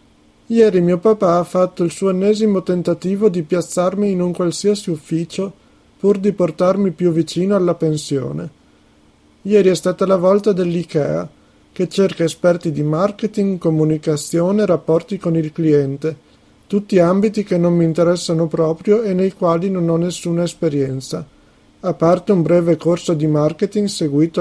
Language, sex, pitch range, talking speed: Italian, male, 155-190 Hz, 150 wpm